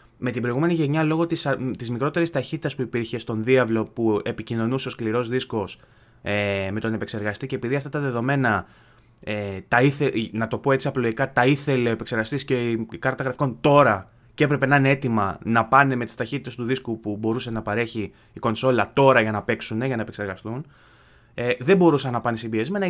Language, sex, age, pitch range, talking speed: Greek, male, 20-39, 115-150 Hz, 195 wpm